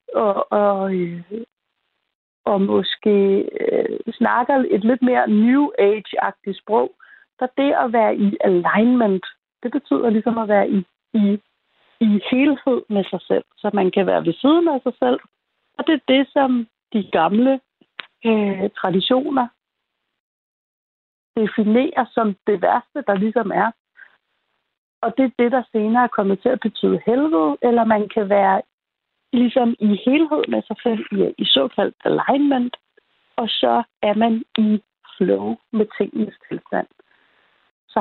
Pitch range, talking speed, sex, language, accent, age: 205-255 Hz, 135 wpm, female, Danish, native, 60-79